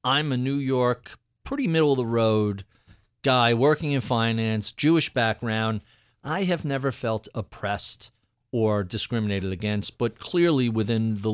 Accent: American